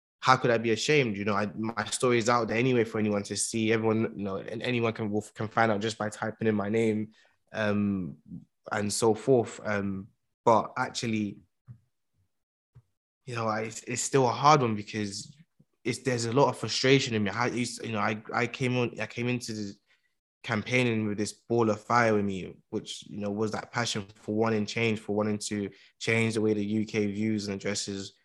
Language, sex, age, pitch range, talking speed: English, male, 20-39, 105-120 Hz, 210 wpm